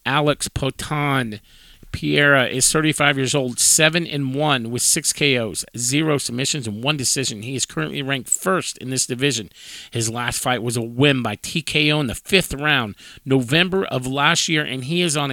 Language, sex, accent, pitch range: English, male, American, 120-160 Hz